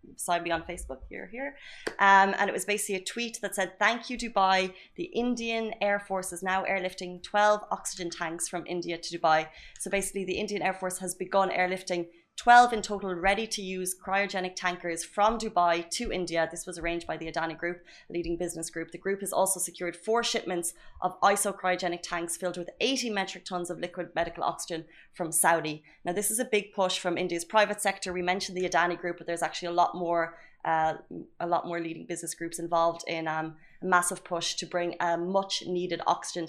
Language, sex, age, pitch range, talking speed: Arabic, female, 20-39, 170-195 Hz, 205 wpm